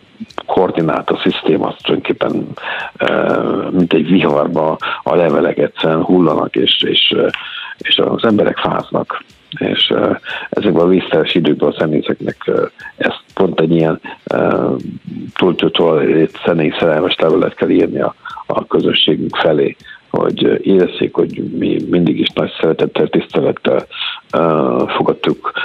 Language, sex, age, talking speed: Hungarian, male, 60-79, 115 wpm